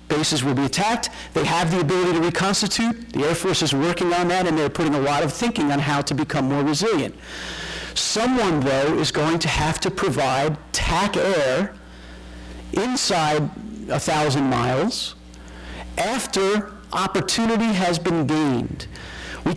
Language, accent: English, American